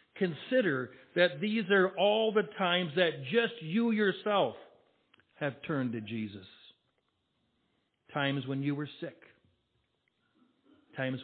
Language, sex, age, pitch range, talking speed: English, male, 60-79, 130-175 Hz, 110 wpm